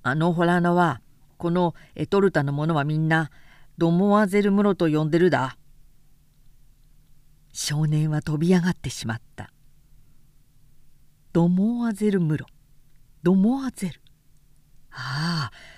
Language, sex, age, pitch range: Japanese, female, 50-69, 140-195 Hz